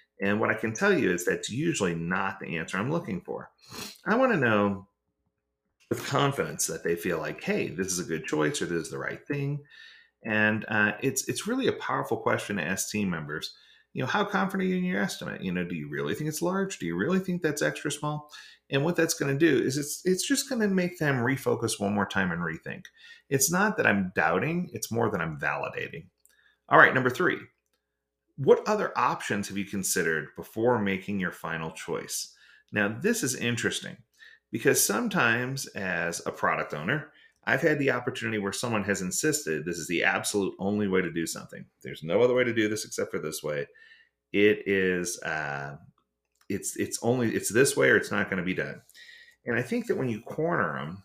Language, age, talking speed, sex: English, 30-49, 210 wpm, male